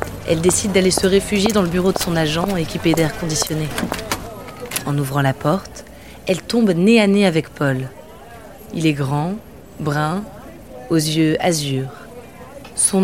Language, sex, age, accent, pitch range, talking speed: French, female, 20-39, French, 150-195 Hz, 150 wpm